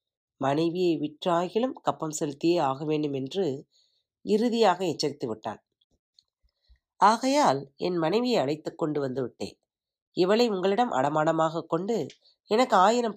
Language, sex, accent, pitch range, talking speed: Tamil, female, native, 150-195 Hz, 105 wpm